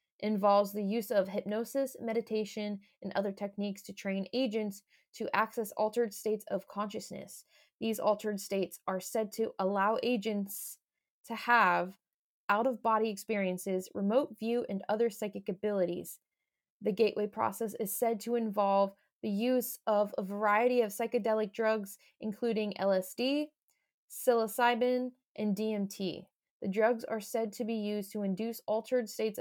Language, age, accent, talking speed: English, 20-39, American, 135 wpm